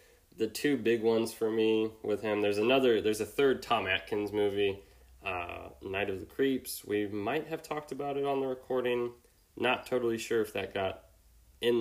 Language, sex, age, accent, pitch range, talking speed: English, male, 20-39, American, 95-120 Hz, 190 wpm